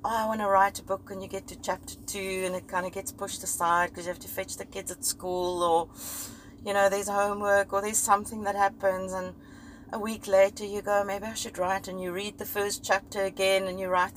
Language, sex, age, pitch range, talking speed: English, female, 30-49, 185-210 Hz, 245 wpm